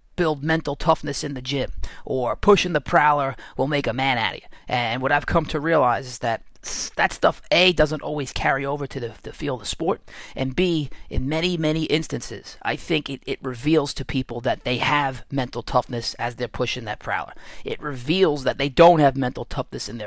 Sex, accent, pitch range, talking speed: male, American, 125-150 Hz, 205 wpm